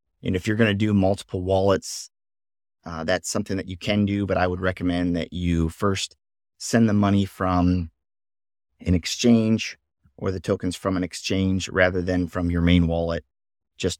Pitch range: 80-100 Hz